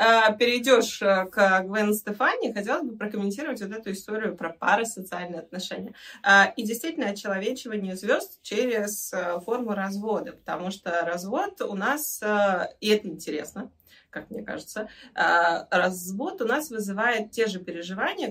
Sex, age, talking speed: female, 20-39, 130 wpm